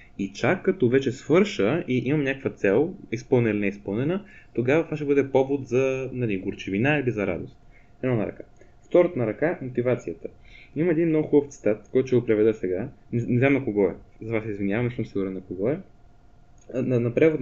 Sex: male